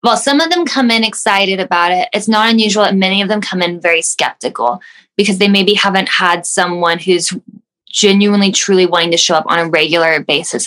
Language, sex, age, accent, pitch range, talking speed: English, female, 10-29, American, 175-205 Hz, 210 wpm